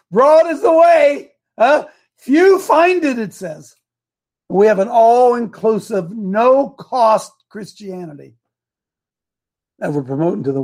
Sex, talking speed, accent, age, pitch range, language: male, 120 wpm, American, 60-79, 165-250 Hz, English